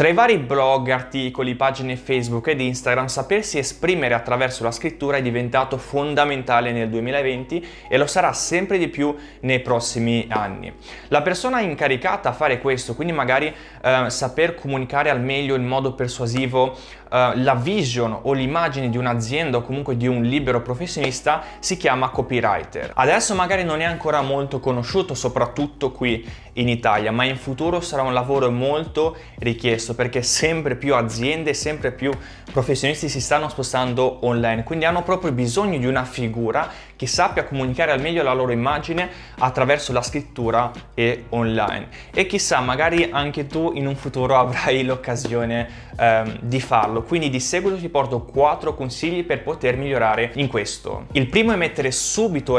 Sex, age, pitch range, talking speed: male, 20-39, 125-150 Hz, 160 wpm